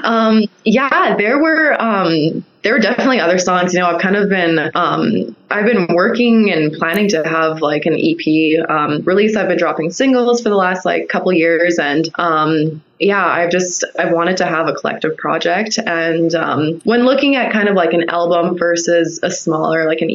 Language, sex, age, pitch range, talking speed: English, female, 20-39, 165-210 Hz, 195 wpm